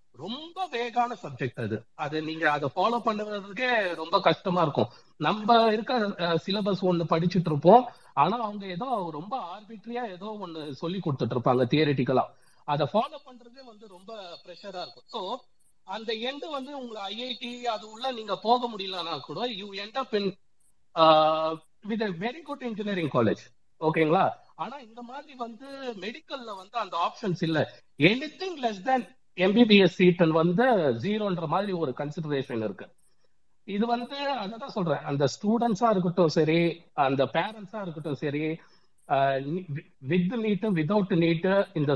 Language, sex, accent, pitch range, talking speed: Tamil, male, native, 160-230 Hz, 95 wpm